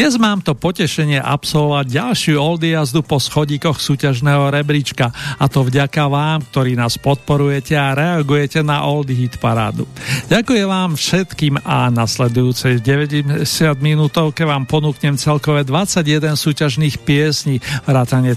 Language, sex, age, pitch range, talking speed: Slovak, male, 50-69, 135-155 Hz, 130 wpm